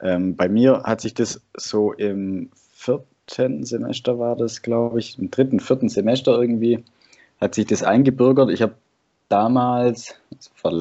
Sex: male